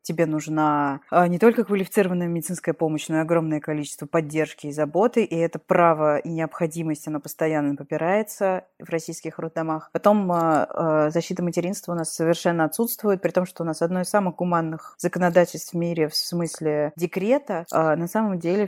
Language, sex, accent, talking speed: Russian, female, native, 160 wpm